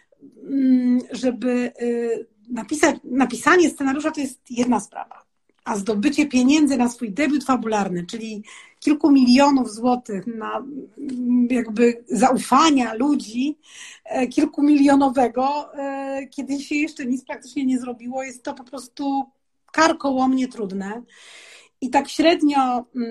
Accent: native